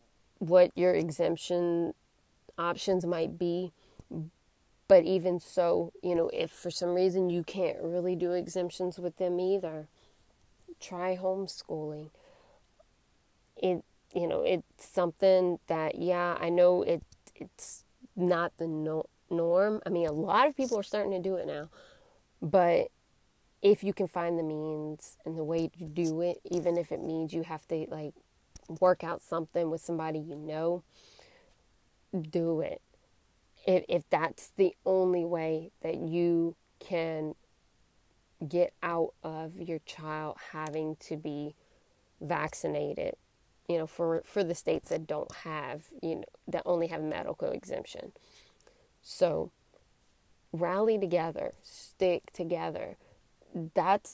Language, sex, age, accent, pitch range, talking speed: English, female, 20-39, American, 160-185 Hz, 135 wpm